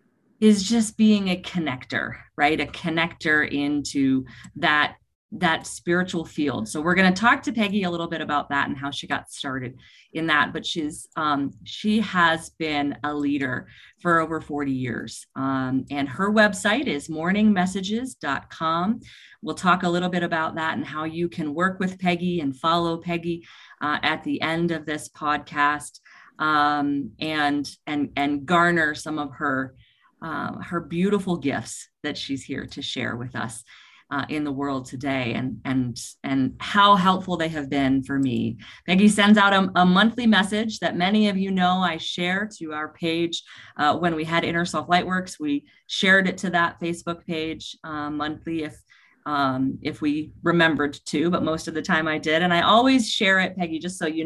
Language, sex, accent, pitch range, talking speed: English, female, American, 145-180 Hz, 180 wpm